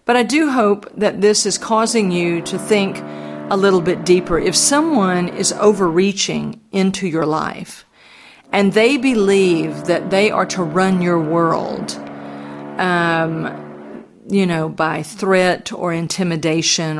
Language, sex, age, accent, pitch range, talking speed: English, female, 50-69, American, 160-205 Hz, 140 wpm